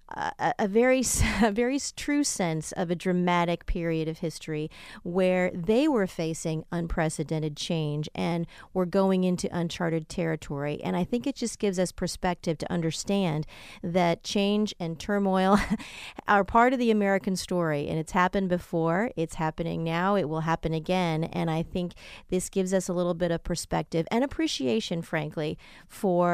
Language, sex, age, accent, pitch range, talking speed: English, female, 40-59, American, 165-200 Hz, 160 wpm